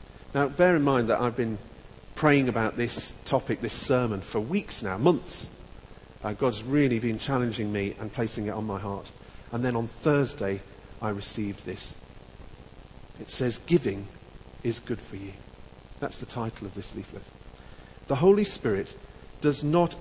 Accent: British